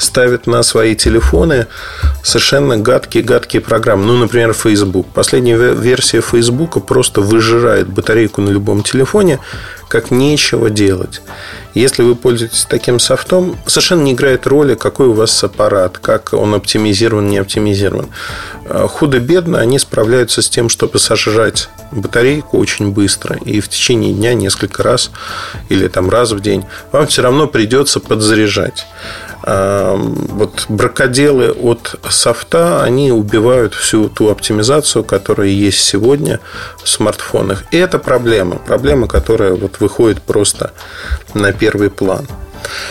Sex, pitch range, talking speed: male, 105-135 Hz, 125 wpm